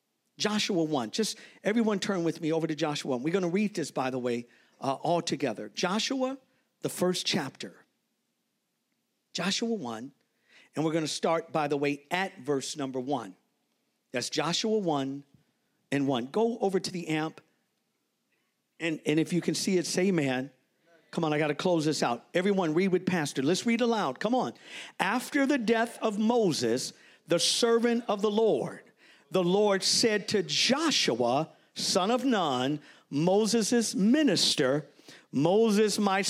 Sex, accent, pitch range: male, American, 160-230 Hz